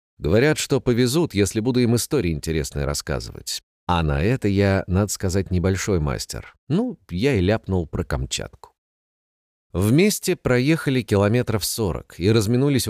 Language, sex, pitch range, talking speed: Russian, male, 95-120 Hz, 135 wpm